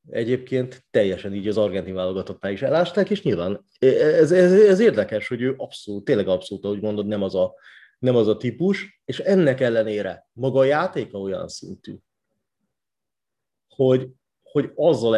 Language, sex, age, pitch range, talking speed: Hungarian, male, 30-49, 110-145 Hz, 155 wpm